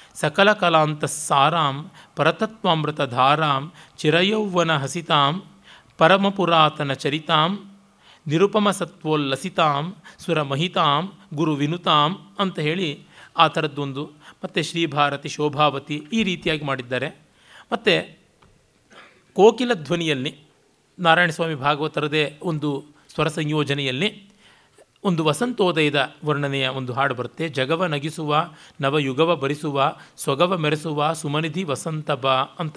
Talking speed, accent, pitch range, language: 80 wpm, native, 145-180 Hz, Kannada